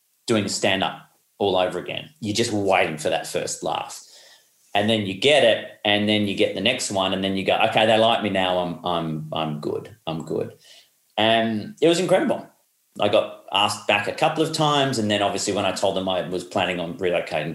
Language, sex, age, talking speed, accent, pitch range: English, male, 30-49, 215 wpm, Australian, 95-110 Hz